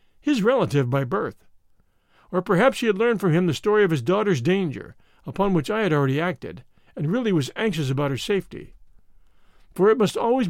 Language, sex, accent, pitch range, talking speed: English, male, American, 150-205 Hz, 195 wpm